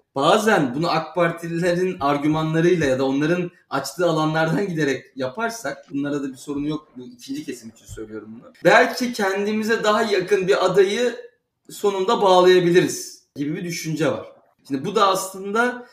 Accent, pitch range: native, 140-200 Hz